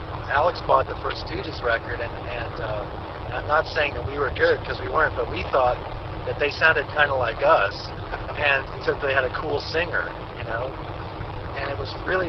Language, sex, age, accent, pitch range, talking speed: English, male, 40-59, American, 100-130 Hz, 205 wpm